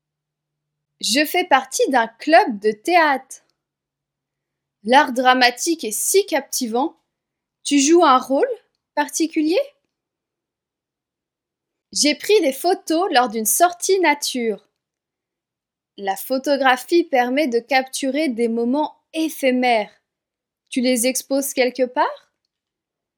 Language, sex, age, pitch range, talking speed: French, female, 20-39, 235-330 Hz, 100 wpm